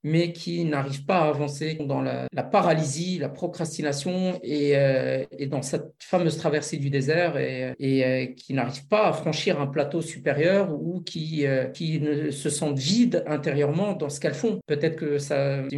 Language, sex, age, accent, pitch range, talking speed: French, male, 50-69, French, 145-180 Hz, 185 wpm